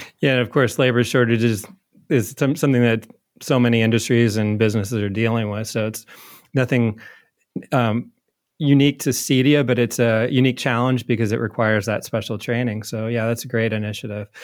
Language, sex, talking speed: English, male, 180 wpm